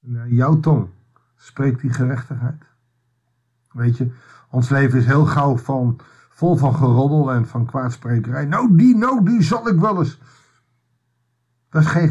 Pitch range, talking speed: 120-160 Hz, 155 wpm